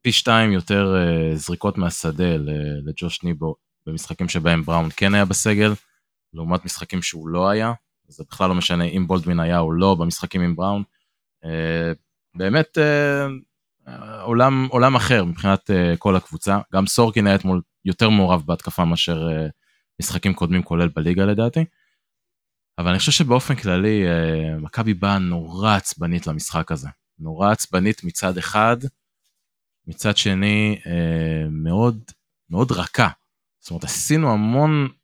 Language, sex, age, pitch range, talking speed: Hebrew, male, 20-39, 85-110 Hz, 125 wpm